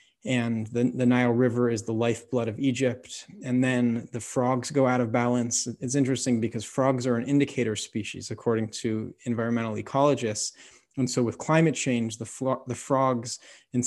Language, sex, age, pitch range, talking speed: English, male, 30-49, 120-140 Hz, 170 wpm